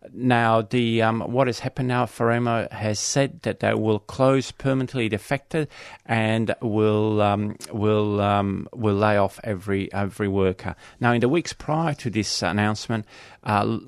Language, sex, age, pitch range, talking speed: English, male, 40-59, 95-115 Hz, 160 wpm